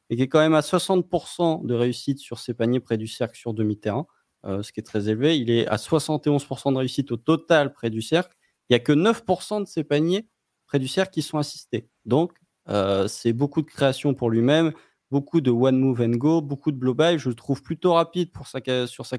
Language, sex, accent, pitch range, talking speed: French, male, French, 115-145 Hz, 220 wpm